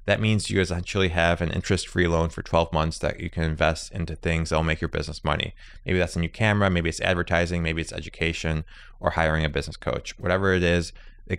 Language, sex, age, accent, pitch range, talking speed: English, male, 20-39, American, 85-100 Hz, 230 wpm